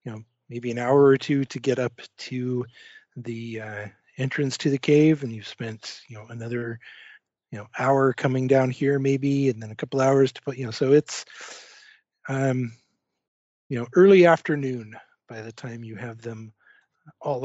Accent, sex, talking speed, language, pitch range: American, male, 175 wpm, English, 120-140 Hz